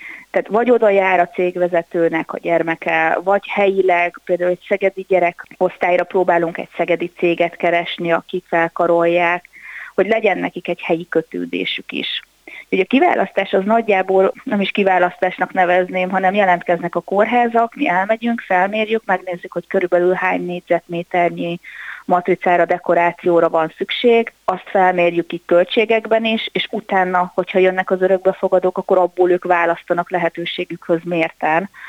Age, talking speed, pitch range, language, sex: 30-49, 135 wpm, 170-190 Hz, Hungarian, female